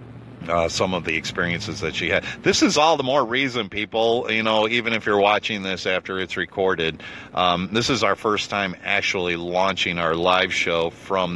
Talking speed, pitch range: 195 wpm, 85-110 Hz